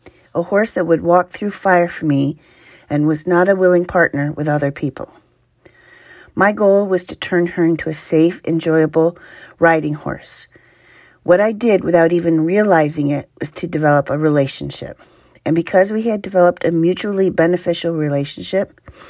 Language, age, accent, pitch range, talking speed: English, 40-59, American, 155-185 Hz, 160 wpm